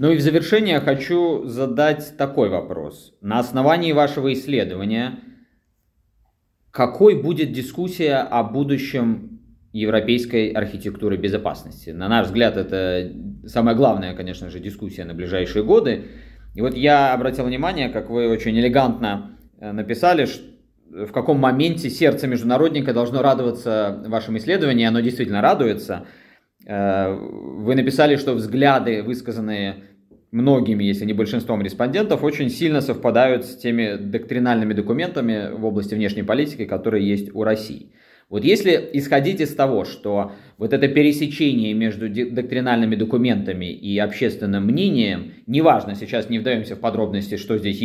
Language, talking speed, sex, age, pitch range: Russian, 130 wpm, male, 20-39, 105-140 Hz